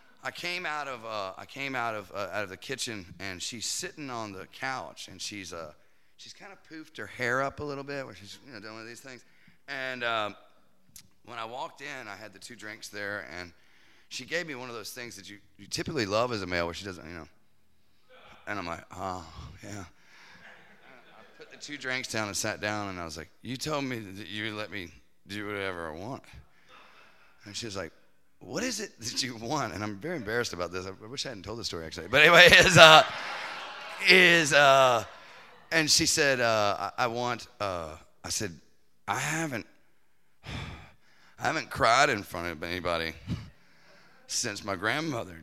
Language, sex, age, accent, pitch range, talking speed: English, male, 30-49, American, 95-130 Hz, 205 wpm